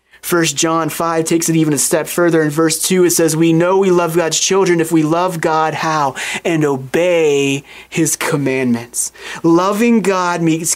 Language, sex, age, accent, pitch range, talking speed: English, male, 30-49, American, 145-175 Hz, 180 wpm